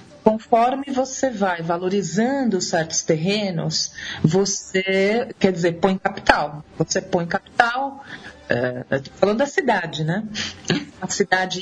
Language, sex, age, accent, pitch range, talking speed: Portuguese, female, 40-59, Brazilian, 175-230 Hz, 110 wpm